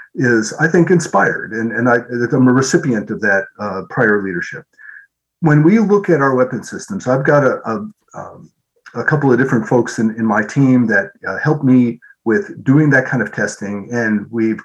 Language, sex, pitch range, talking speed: English, male, 115-160 Hz, 195 wpm